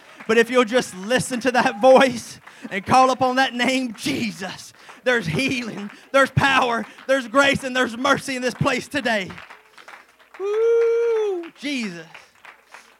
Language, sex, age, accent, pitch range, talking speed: English, male, 30-49, American, 140-185 Hz, 135 wpm